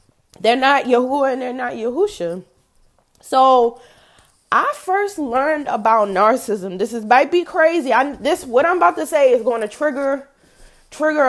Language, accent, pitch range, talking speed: English, American, 225-320 Hz, 160 wpm